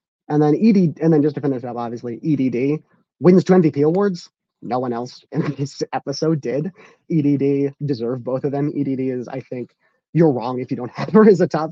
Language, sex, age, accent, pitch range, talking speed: English, male, 30-49, American, 125-160 Hz, 210 wpm